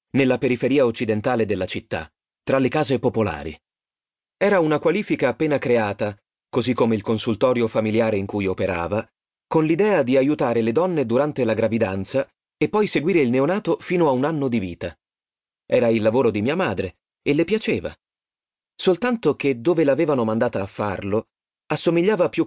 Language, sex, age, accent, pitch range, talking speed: Italian, male, 30-49, native, 110-140 Hz, 160 wpm